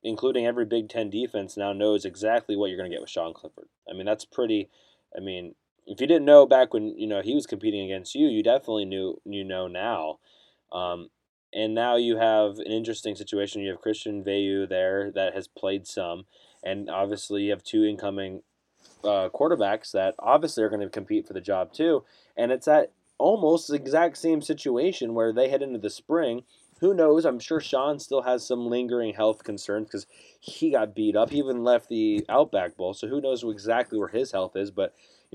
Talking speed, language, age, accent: 205 wpm, English, 20-39, American